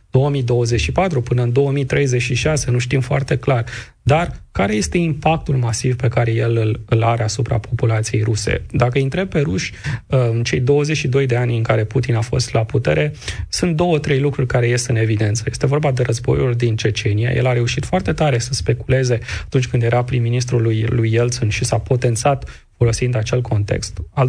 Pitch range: 115-135 Hz